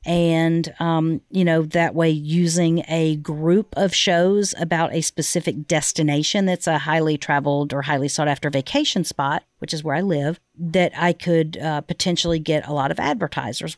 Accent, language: American, English